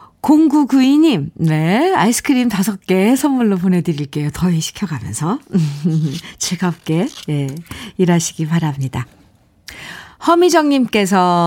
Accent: native